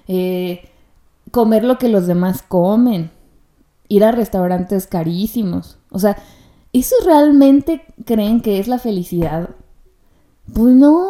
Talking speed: 120 wpm